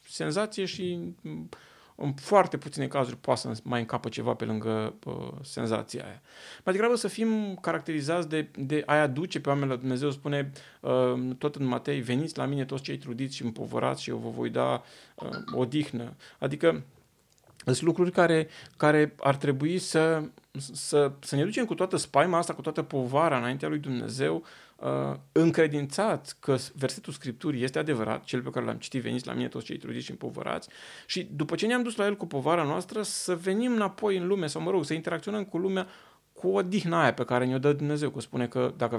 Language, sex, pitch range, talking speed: Romanian, male, 125-180 Hz, 190 wpm